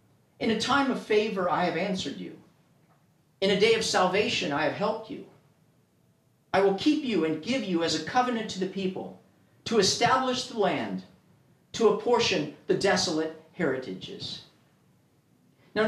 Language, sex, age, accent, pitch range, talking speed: English, male, 50-69, American, 175-235 Hz, 155 wpm